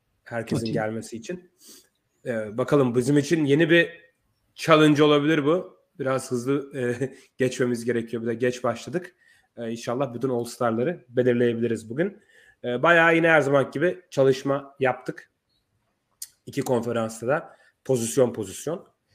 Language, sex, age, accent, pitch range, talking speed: Turkish, male, 30-49, native, 120-155 Hz, 130 wpm